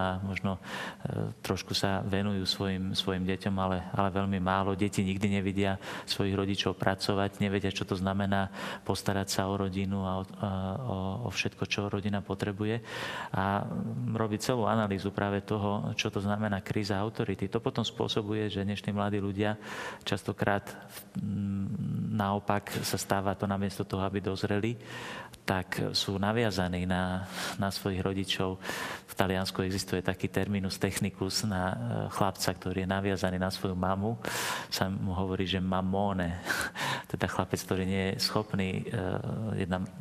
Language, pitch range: Slovak, 95-105 Hz